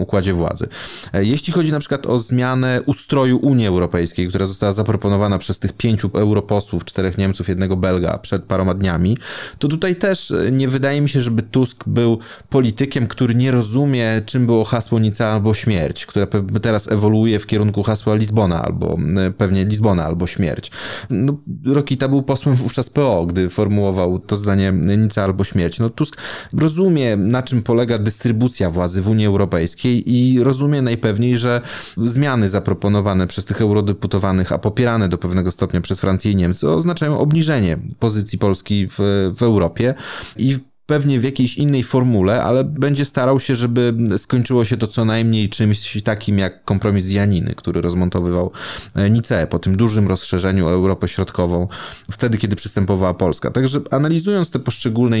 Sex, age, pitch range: male, 20-39, 95-125 Hz